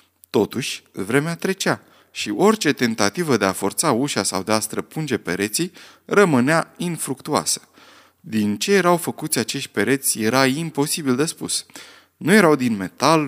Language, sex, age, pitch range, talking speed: Romanian, male, 20-39, 110-160 Hz, 140 wpm